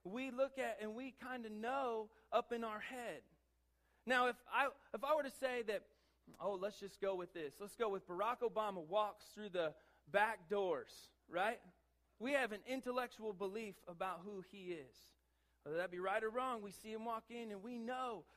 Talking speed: 200 wpm